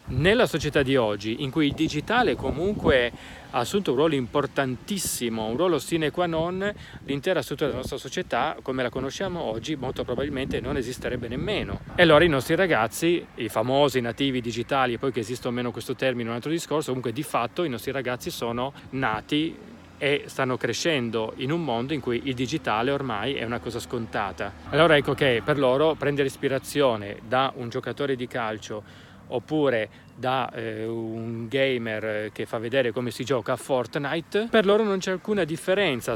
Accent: native